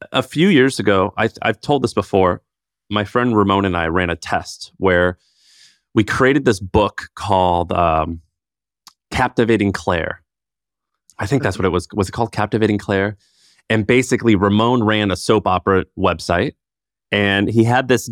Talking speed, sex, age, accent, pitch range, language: 160 wpm, male, 30-49, American, 95-110 Hz, English